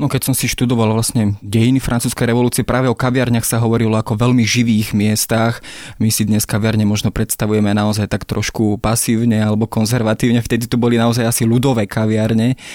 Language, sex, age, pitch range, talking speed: Slovak, male, 20-39, 105-120 Hz, 180 wpm